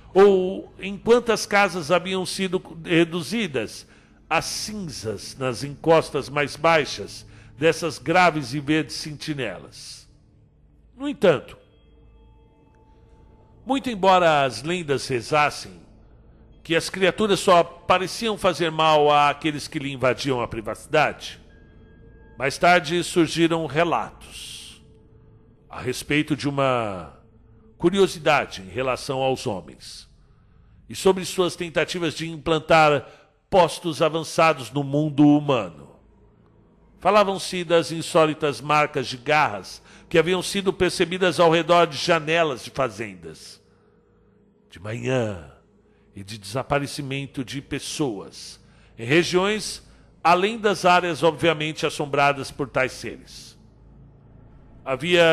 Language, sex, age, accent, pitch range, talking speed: Portuguese, male, 60-79, Brazilian, 125-175 Hz, 105 wpm